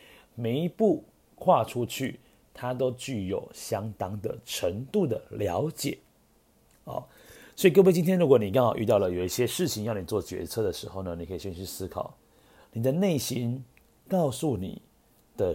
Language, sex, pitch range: Chinese, male, 85-125 Hz